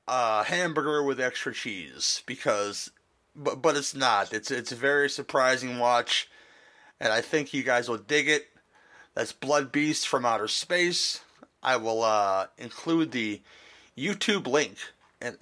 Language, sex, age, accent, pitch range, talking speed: English, male, 30-49, American, 130-170 Hz, 150 wpm